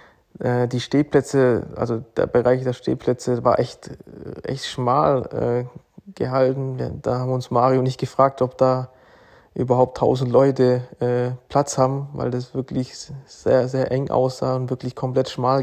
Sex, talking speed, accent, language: male, 150 wpm, German, German